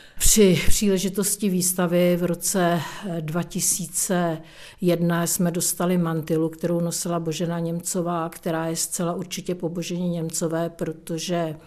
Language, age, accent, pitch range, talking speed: Czech, 50-69, native, 165-180 Hz, 105 wpm